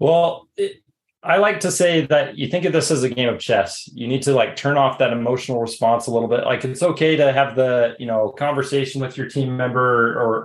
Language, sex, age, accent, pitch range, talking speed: English, male, 30-49, American, 115-145 Hz, 240 wpm